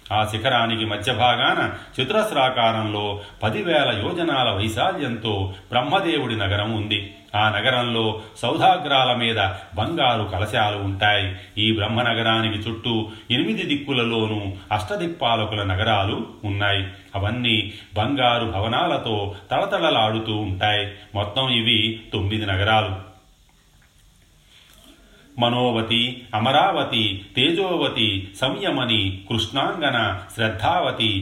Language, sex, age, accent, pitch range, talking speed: Telugu, male, 40-59, native, 100-120 Hz, 80 wpm